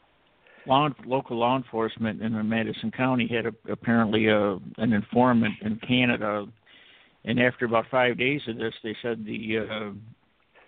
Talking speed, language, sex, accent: 145 wpm, English, male, American